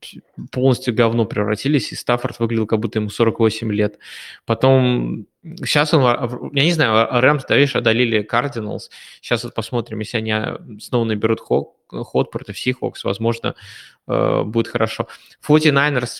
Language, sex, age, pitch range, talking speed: Russian, male, 20-39, 110-130 Hz, 135 wpm